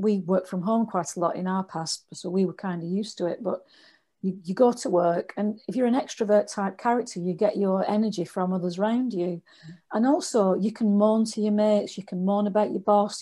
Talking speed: 240 wpm